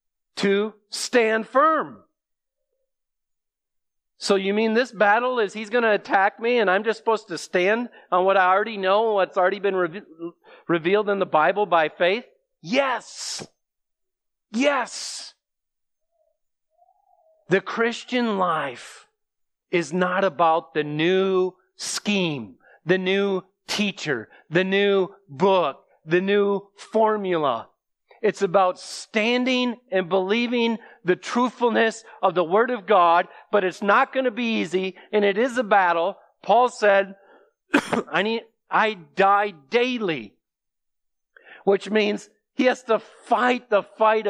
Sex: male